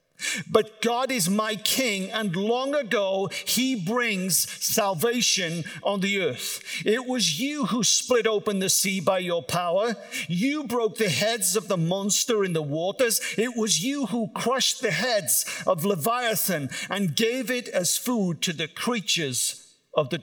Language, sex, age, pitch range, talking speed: English, male, 50-69, 190-240 Hz, 160 wpm